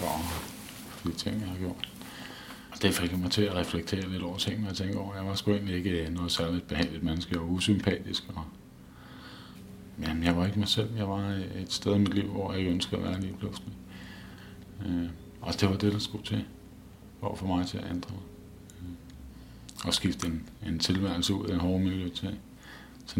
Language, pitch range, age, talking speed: Danish, 85-100 Hz, 50-69, 205 wpm